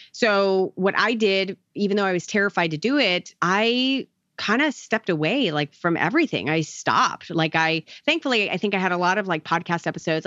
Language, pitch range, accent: English, 165-215 Hz, American